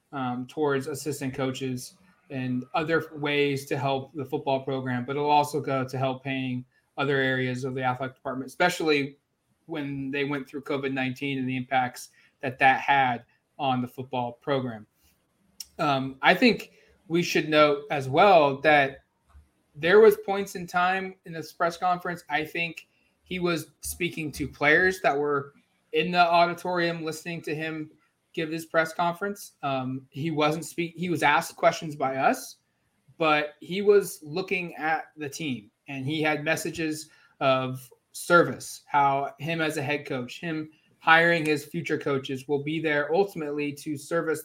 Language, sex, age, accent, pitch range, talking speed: English, male, 20-39, American, 135-160 Hz, 160 wpm